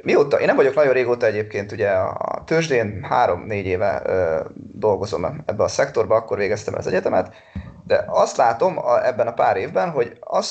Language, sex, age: Hungarian, male, 30-49